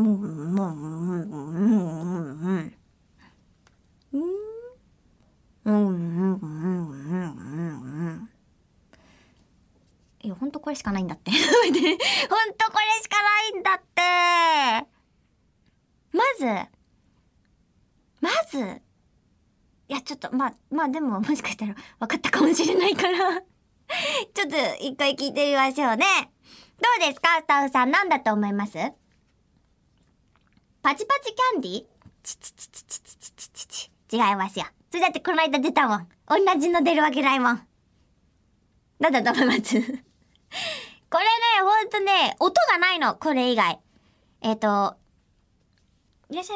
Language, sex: Japanese, male